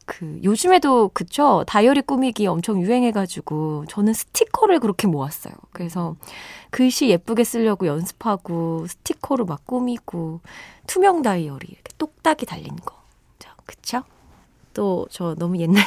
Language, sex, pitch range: Korean, female, 175-255 Hz